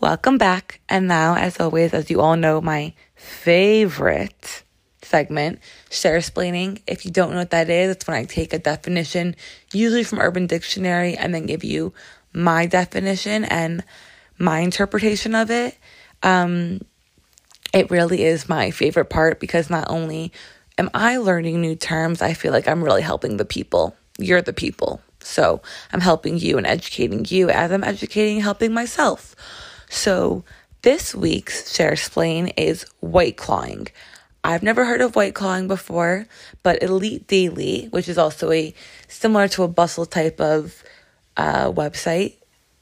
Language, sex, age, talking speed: English, female, 20-39, 155 wpm